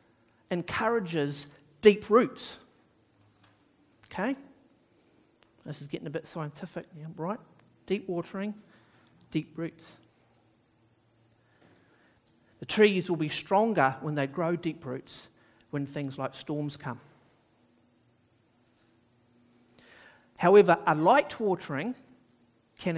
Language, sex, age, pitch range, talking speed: English, male, 40-59, 120-175 Hz, 95 wpm